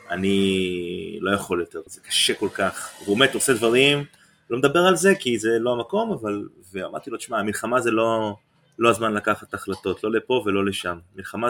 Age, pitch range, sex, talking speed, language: 20-39, 95-120 Hz, male, 190 wpm, Hebrew